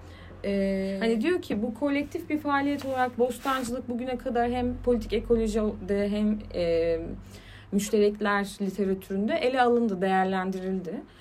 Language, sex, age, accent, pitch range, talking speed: Turkish, female, 40-59, native, 180-245 Hz, 120 wpm